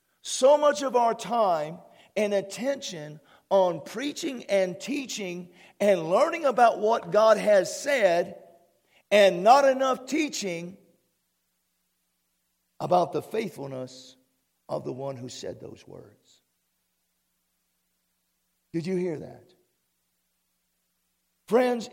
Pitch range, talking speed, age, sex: 130-215 Hz, 100 wpm, 50-69, male